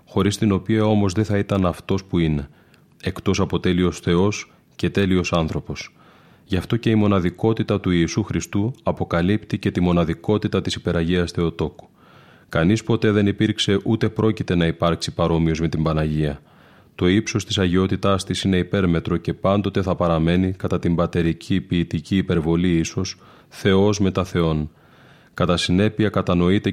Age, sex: 30-49, male